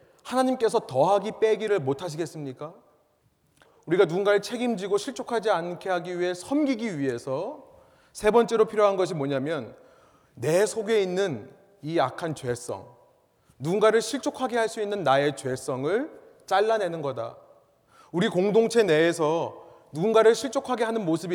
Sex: male